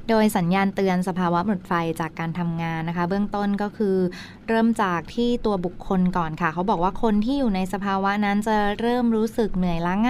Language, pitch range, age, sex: Thai, 180-220 Hz, 20-39, female